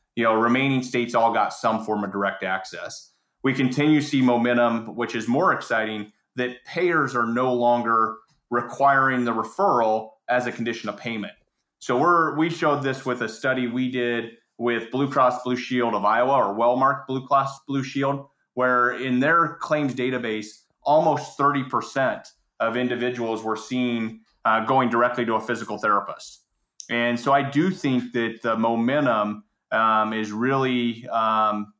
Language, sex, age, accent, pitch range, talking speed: English, male, 30-49, American, 115-140 Hz, 160 wpm